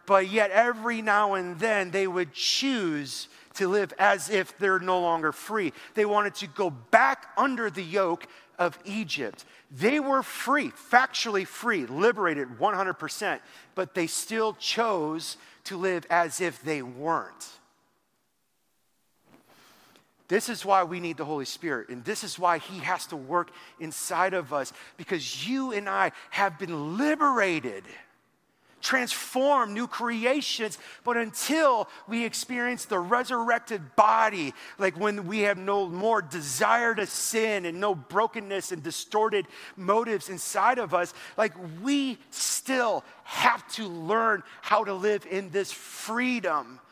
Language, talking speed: English, 140 wpm